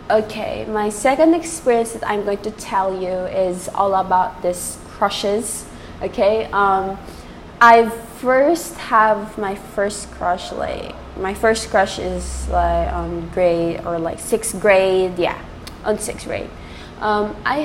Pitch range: 185-220 Hz